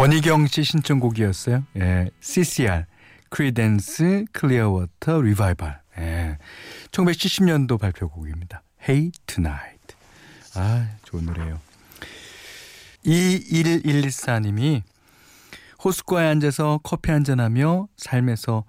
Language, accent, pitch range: Korean, native, 95-150 Hz